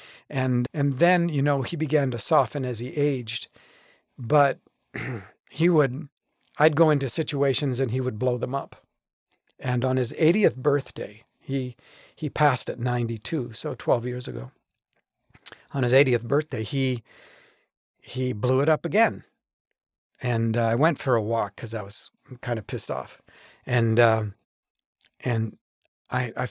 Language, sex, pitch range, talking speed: English, male, 115-140 Hz, 155 wpm